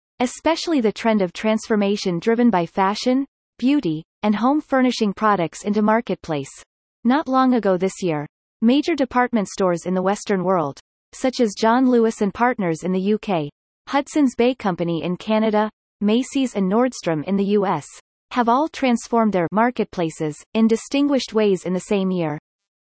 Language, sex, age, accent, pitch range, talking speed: English, female, 30-49, American, 185-240 Hz, 155 wpm